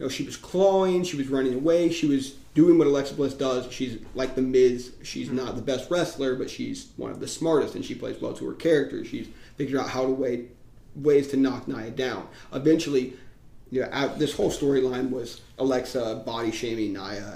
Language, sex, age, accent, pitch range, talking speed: English, male, 30-49, American, 120-140 Hz, 205 wpm